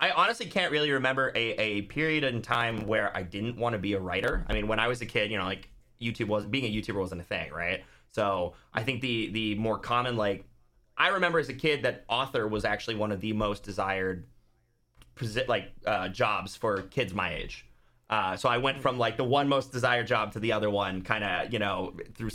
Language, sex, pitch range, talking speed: English, male, 100-125 Hz, 235 wpm